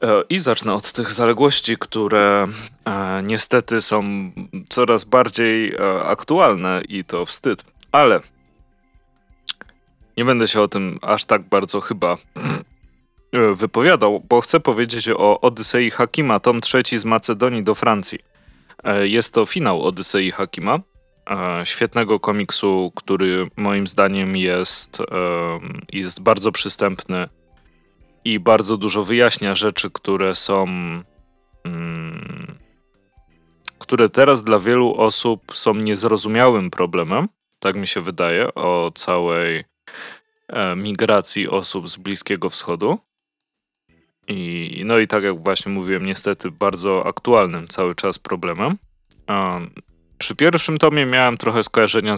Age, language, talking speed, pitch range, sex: 20-39, Polish, 115 wpm, 90-115 Hz, male